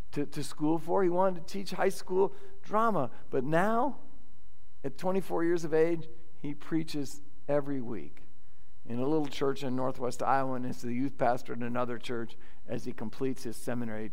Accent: American